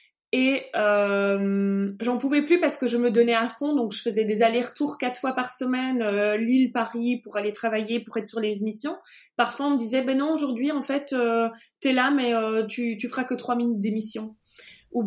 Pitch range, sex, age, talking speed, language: 225-290 Hz, female, 20-39, 210 wpm, French